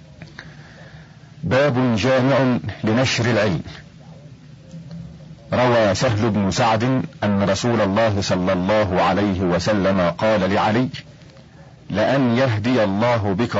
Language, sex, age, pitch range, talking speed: Arabic, male, 50-69, 100-140 Hz, 95 wpm